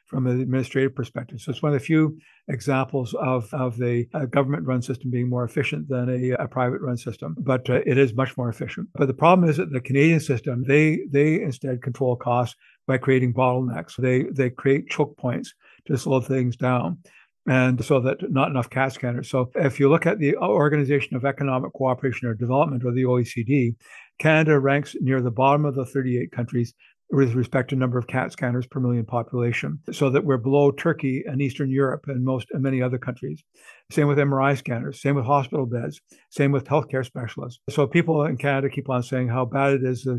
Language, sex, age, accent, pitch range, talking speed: English, male, 60-79, American, 125-145 Hz, 205 wpm